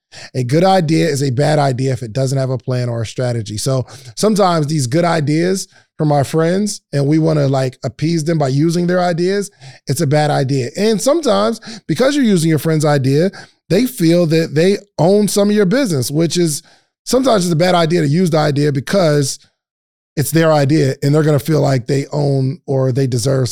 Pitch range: 130-170 Hz